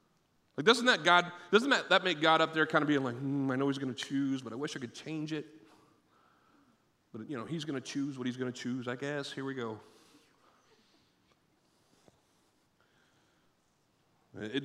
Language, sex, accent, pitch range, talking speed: English, male, American, 115-155 Hz, 195 wpm